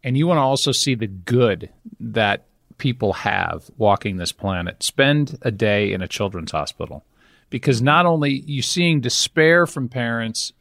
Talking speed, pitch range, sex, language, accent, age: 170 wpm, 105-135 Hz, male, English, American, 40-59